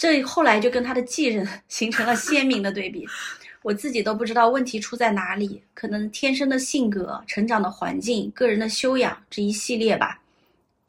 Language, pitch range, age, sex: Chinese, 200-245 Hz, 30-49, female